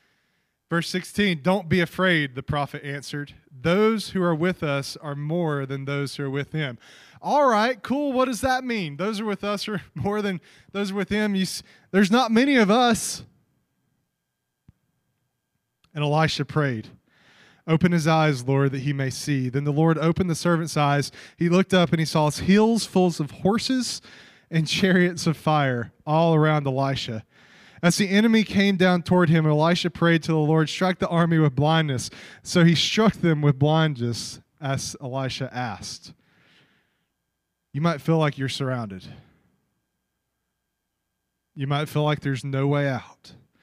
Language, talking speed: English, 170 wpm